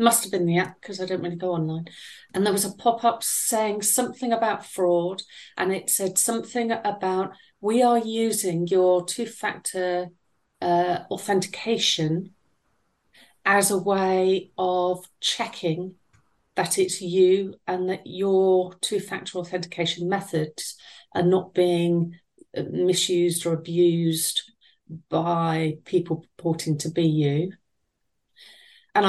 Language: English